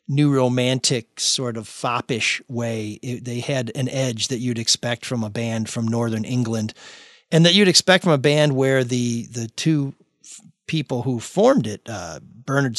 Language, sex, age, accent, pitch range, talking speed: English, male, 40-59, American, 115-140 Hz, 180 wpm